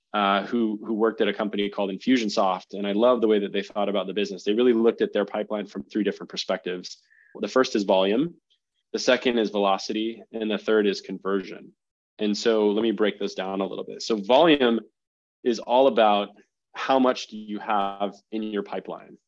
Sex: male